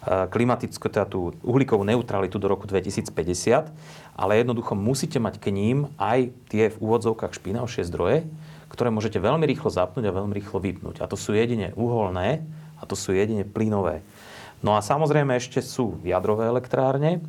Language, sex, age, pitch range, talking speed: Slovak, male, 30-49, 95-125 Hz, 155 wpm